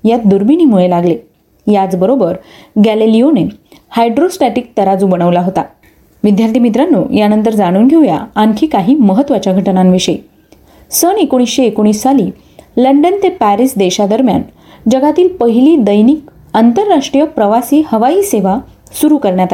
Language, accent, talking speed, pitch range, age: Marathi, native, 105 wpm, 200-275 Hz, 30-49